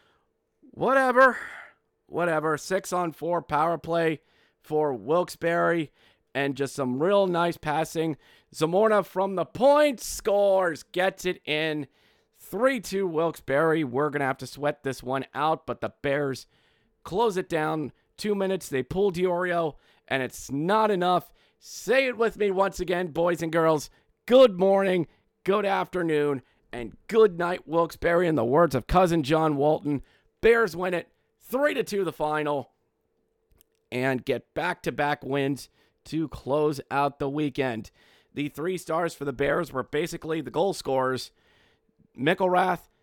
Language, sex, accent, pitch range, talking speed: English, male, American, 140-180 Hz, 140 wpm